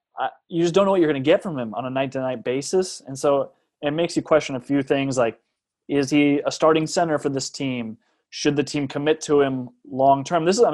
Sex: male